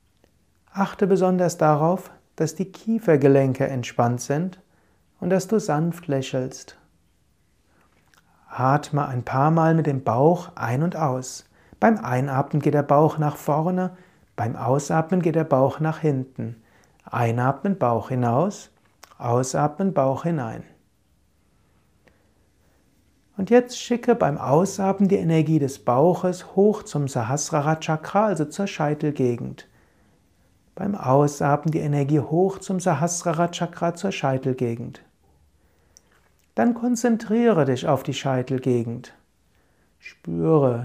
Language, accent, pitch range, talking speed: German, German, 130-180 Hz, 110 wpm